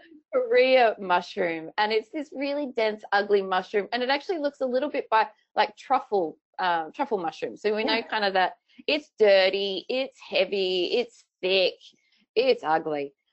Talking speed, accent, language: 160 wpm, Australian, English